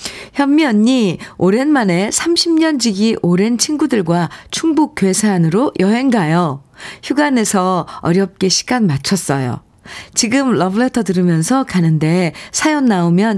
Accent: native